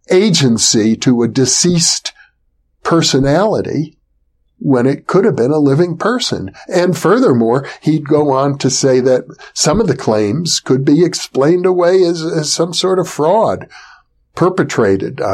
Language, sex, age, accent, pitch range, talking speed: English, male, 60-79, American, 115-165 Hz, 140 wpm